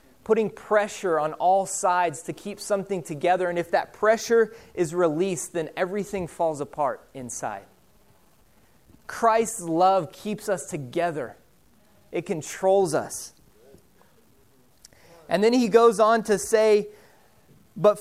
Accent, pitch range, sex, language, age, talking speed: American, 160-205 Hz, male, English, 30-49, 120 wpm